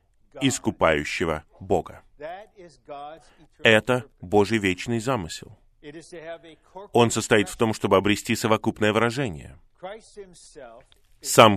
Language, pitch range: Russian, 100-150 Hz